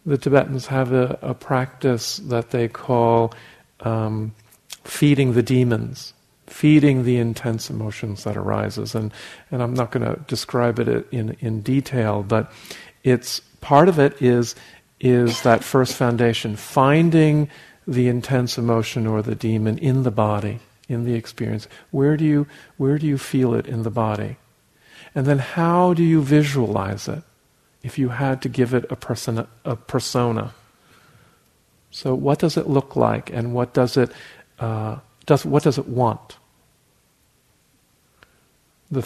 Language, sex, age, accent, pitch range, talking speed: English, male, 50-69, American, 115-140 Hz, 150 wpm